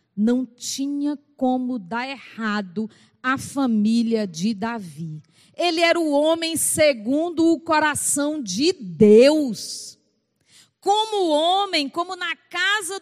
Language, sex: Portuguese, female